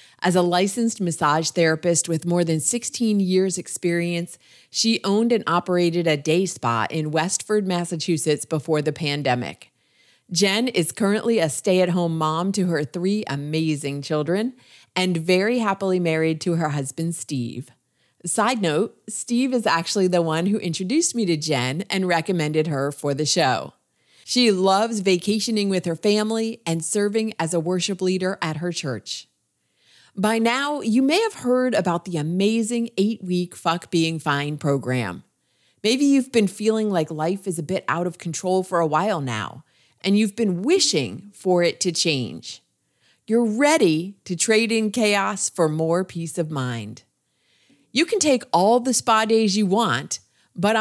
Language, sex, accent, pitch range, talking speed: English, female, American, 160-215 Hz, 160 wpm